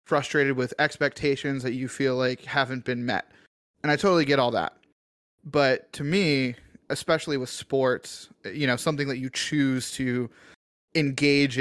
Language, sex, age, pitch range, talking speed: English, male, 30-49, 125-145 Hz, 155 wpm